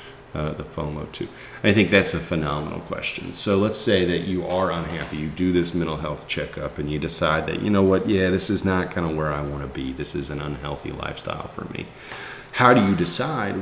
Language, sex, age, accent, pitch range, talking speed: English, male, 40-59, American, 75-95 Hz, 230 wpm